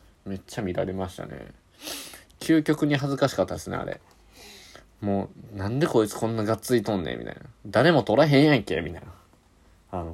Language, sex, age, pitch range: Japanese, male, 20-39, 90-115 Hz